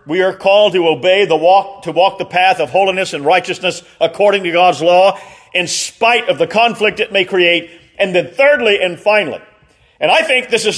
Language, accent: English, American